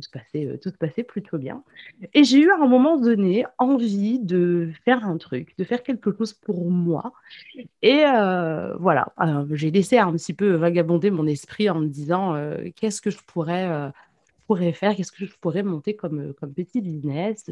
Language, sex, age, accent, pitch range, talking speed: French, female, 20-39, French, 160-215 Hz, 195 wpm